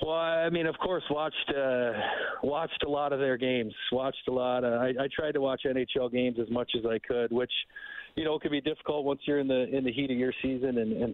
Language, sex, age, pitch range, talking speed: English, male, 40-59, 110-130 Hz, 255 wpm